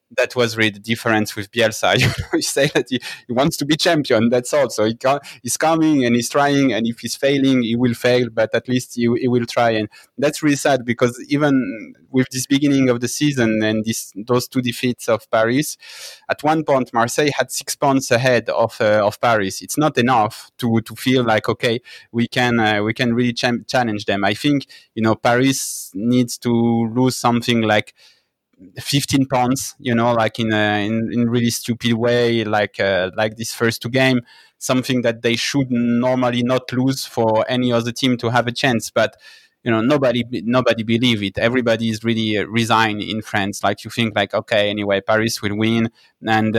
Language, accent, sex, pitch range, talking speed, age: English, French, male, 115-130 Hz, 200 wpm, 20-39